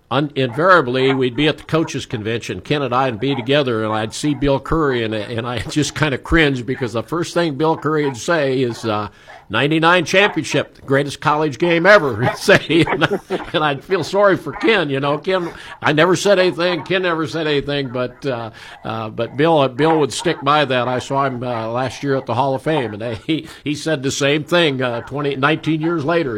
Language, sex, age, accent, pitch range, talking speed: English, male, 50-69, American, 115-150 Hz, 225 wpm